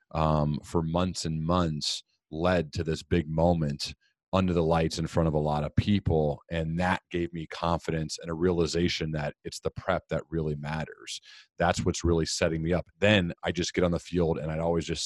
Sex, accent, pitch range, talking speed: male, American, 80-90 Hz, 205 wpm